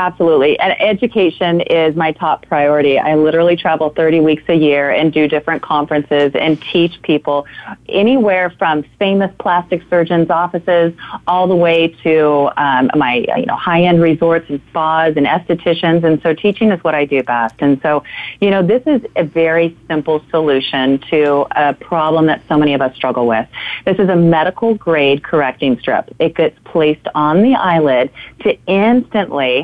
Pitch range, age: 150-190 Hz, 40-59